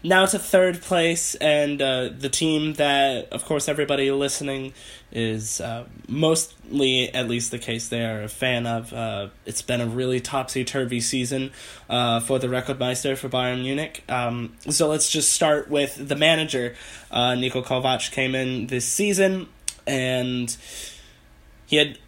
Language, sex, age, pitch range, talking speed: English, male, 20-39, 120-145 Hz, 160 wpm